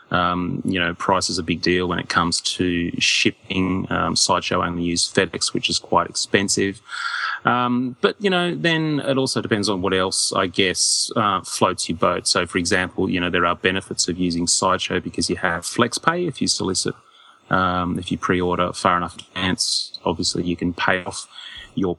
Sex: male